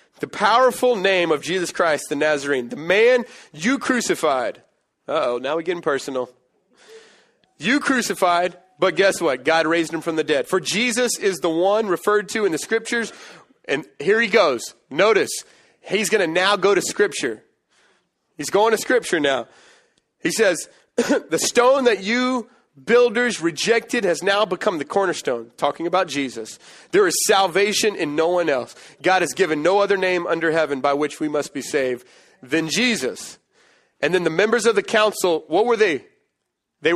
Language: English